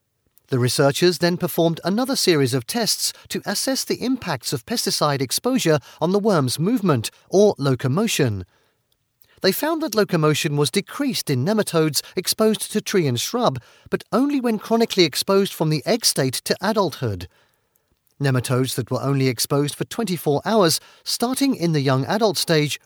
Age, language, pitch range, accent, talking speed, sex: 40-59, English, 140-210 Hz, British, 155 wpm, male